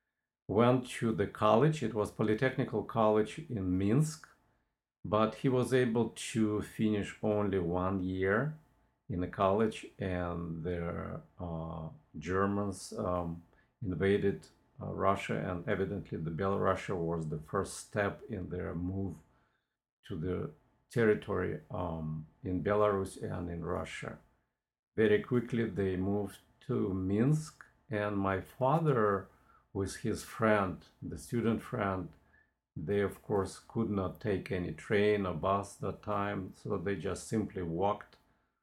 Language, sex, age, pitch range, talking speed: English, male, 50-69, 90-110 Hz, 130 wpm